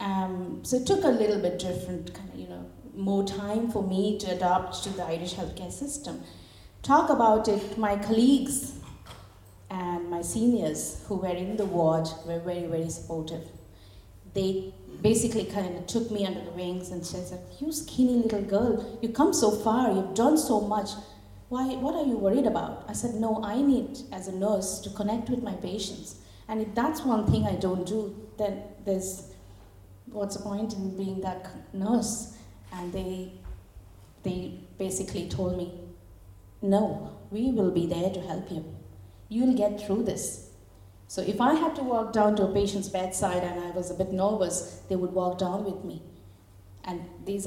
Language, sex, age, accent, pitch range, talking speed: English, female, 30-49, Indian, 165-215 Hz, 180 wpm